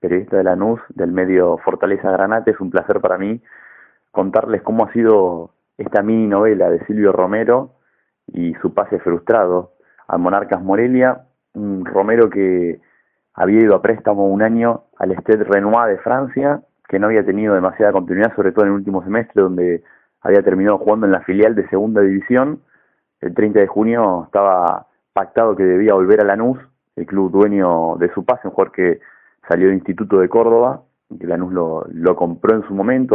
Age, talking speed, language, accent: 30-49, 180 wpm, Spanish, Argentinian